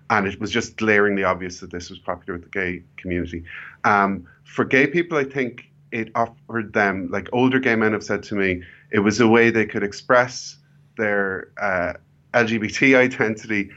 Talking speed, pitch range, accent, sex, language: 185 wpm, 100-115 Hz, Irish, male, English